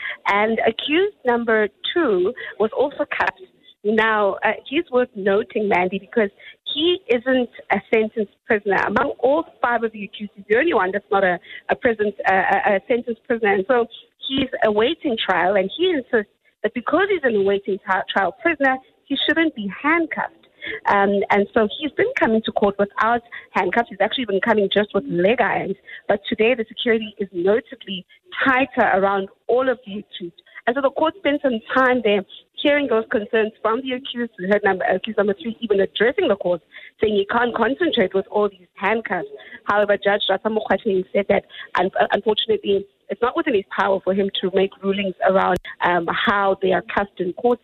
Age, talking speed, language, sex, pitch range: 20-39, 180 wpm, English, female, 200-255 Hz